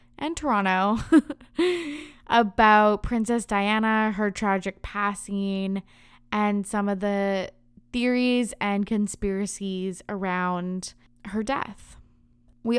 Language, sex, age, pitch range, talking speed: English, female, 20-39, 195-235 Hz, 90 wpm